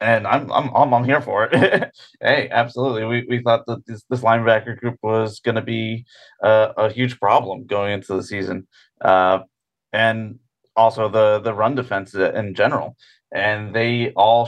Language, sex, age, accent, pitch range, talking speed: English, male, 30-49, American, 105-125 Hz, 175 wpm